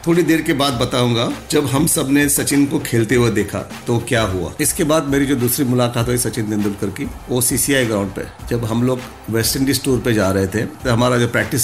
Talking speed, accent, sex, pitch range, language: 225 wpm, native, male, 100-125 Hz, Hindi